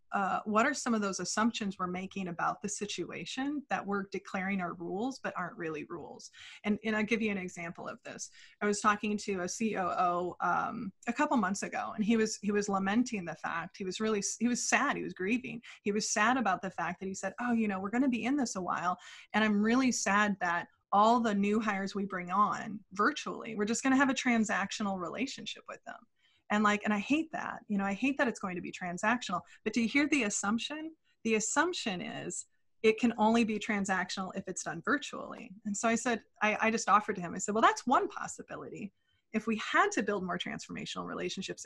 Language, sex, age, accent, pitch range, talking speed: English, female, 20-39, American, 195-245 Hz, 230 wpm